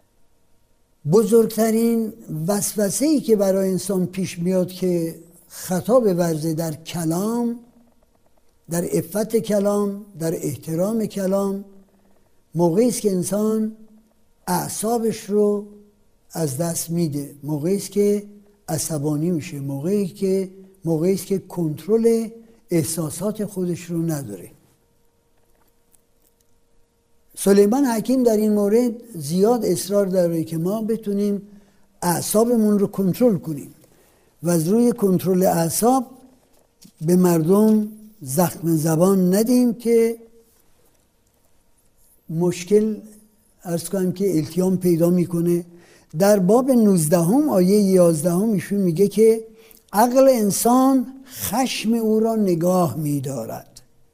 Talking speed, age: 100 wpm, 60-79